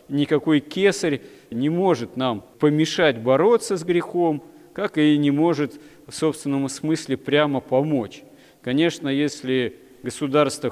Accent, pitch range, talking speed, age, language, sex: native, 120-150 Hz, 120 wpm, 40-59, Russian, male